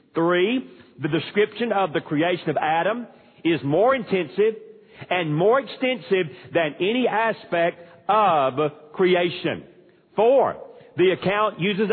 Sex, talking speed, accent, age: male, 115 wpm, American, 50-69